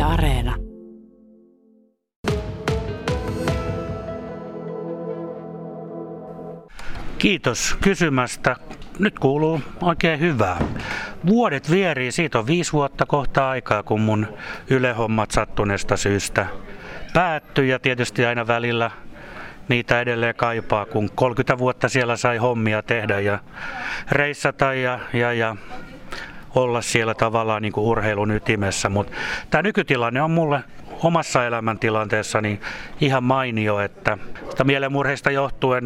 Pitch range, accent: 110-140 Hz, native